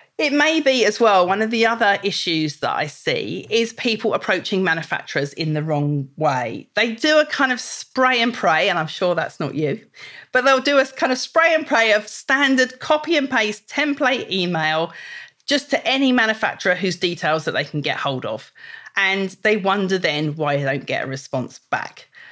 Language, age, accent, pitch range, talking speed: English, 40-59, British, 180-260 Hz, 200 wpm